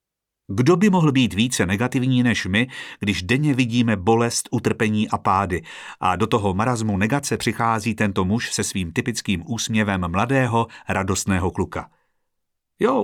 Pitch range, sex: 100-125 Hz, male